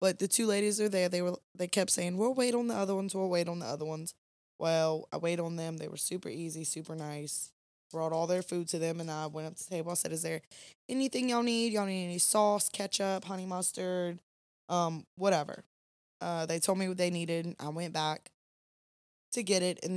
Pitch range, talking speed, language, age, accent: 155-185 Hz, 230 wpm, English, 20-39, American